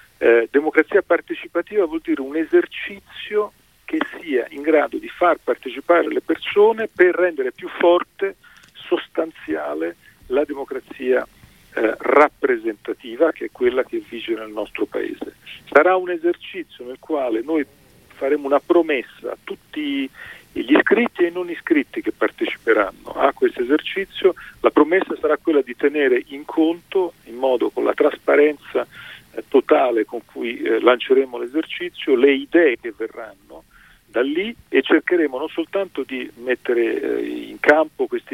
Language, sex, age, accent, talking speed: Italian, male, 40-59, native, 140 wpm